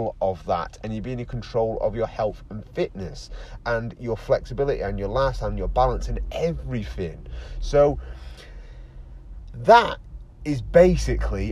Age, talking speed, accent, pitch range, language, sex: 30-49, 140 wpm, British, 100-145 Hz, English, male